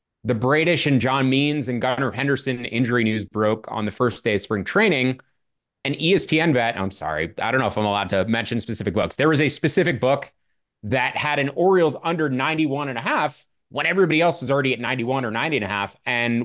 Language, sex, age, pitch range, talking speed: English, male, 30-49, 115-160 Hz, 220 wpm